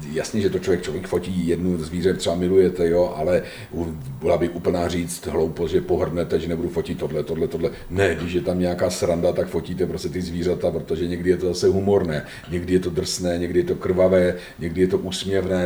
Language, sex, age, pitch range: Czech, male, 50-69, 90-130 Hz